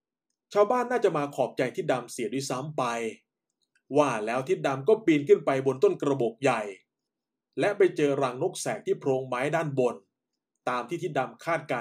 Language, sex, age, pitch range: Thai, male, 20-39, 130-180 Hz